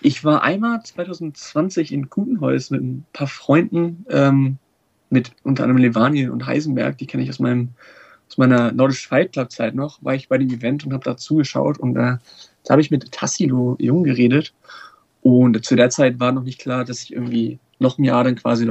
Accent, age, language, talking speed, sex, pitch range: German, 30-49, German, 195 wpm, male, 120-135 Hz